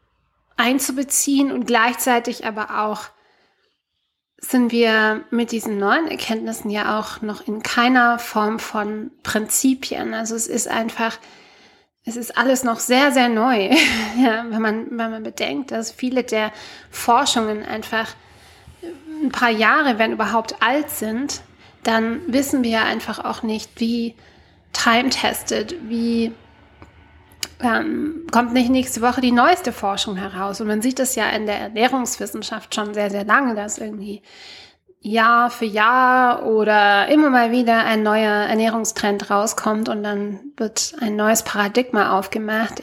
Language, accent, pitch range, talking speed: German, German, 215-250 Hz, 140 wpm